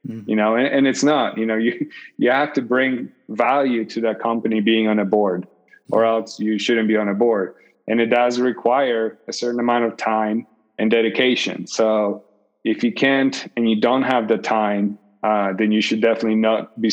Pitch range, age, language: 110-125 Hz, 20-39, English